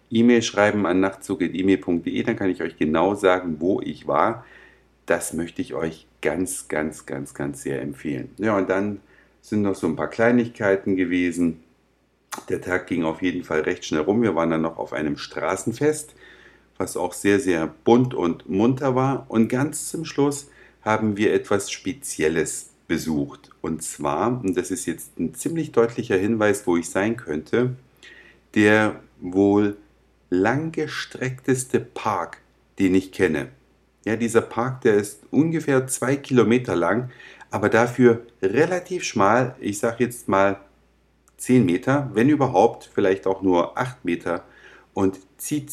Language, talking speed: German, 150 wpm